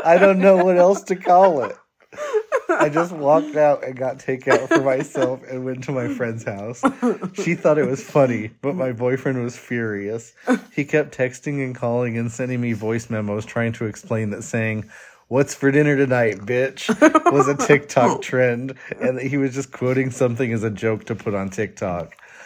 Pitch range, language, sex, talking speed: 110-140 Hz, English, male, 190 wpm